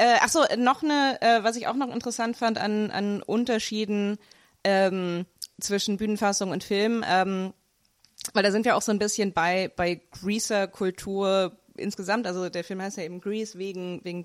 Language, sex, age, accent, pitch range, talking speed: German, female, 20-39, German, 175-210 Hz, 165 wpm